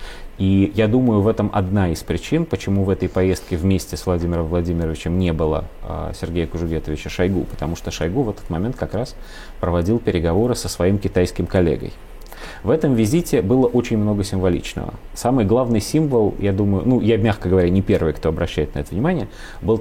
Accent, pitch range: native, 90-110 Hz